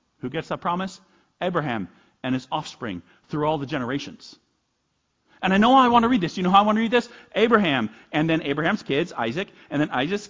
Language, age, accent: English, 40-59, American